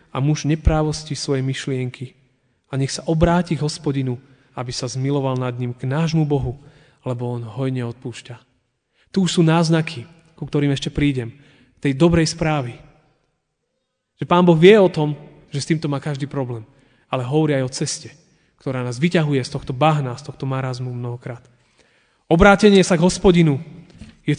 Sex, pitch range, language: male, 130-180 Hz, Slovak